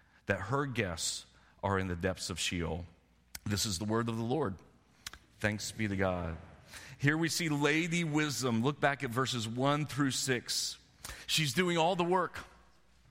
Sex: male